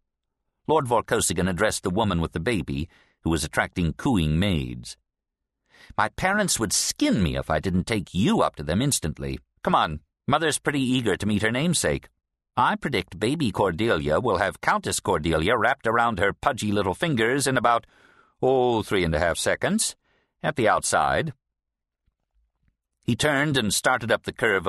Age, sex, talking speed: 50-69, male, 165 wpm